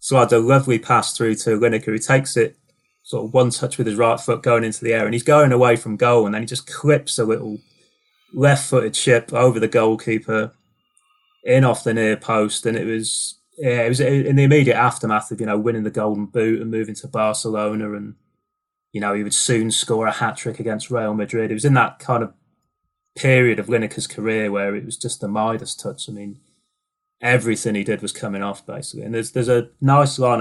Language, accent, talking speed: English, British, 220 wpm